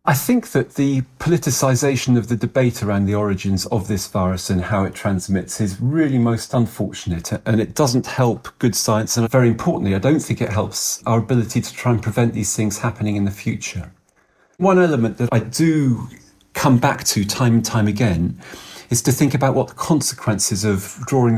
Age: 40-59